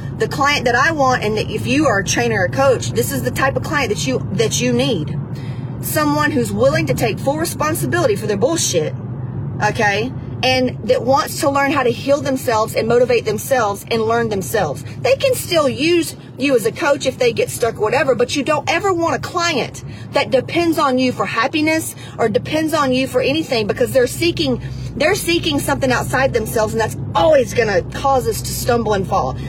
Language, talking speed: English, 210 wpm